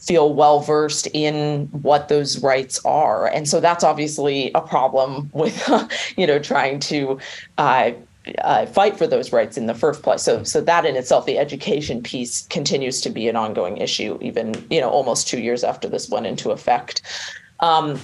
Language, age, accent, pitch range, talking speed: English, 30-49, American, 140-160 Hz, 185 wpm